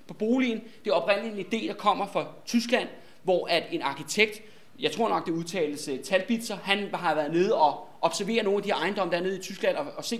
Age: 20-39